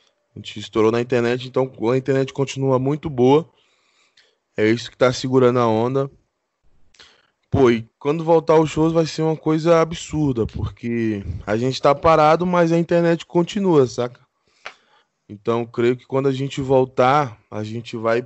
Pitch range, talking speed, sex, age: 120-135 Hz, 160 wpm, male, 20-39